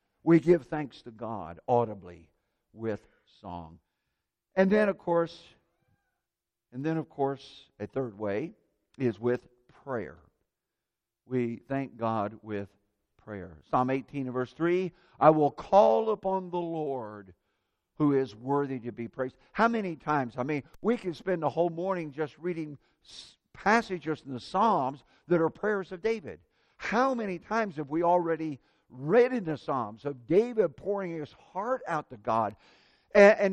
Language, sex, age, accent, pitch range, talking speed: English, male, 60-79, American, 130-210 Hz, 155 wpm